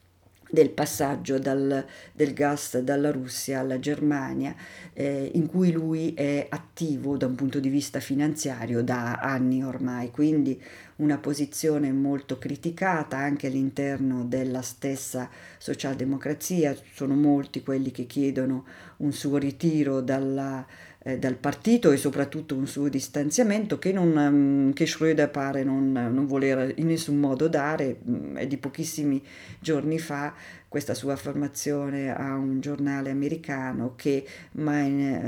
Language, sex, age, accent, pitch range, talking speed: Italian, female, 50-69, native, 135-155 Hz, 130 wpm